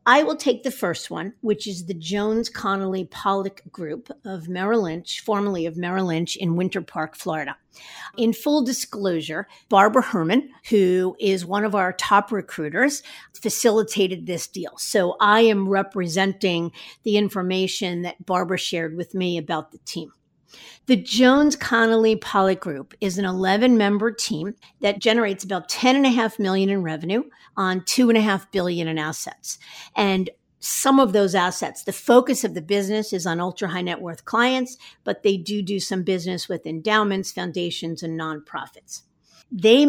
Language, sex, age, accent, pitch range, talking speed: English, female, 50-69, American, 185-230 Hz, 160 wpm